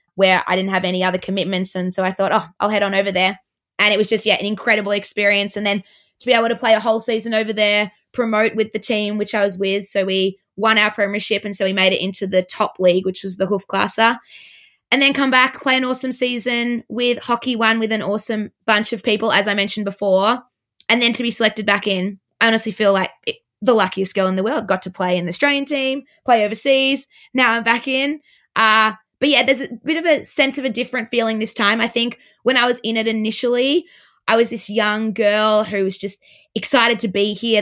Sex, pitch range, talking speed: female, 190-230 Hz, 240 wpm